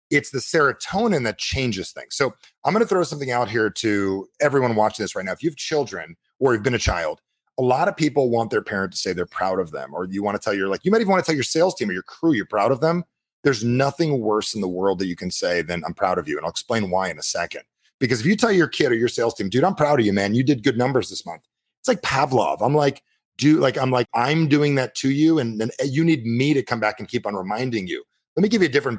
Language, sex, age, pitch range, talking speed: English, male, 30-49, 105-155 Hz, 295 wpm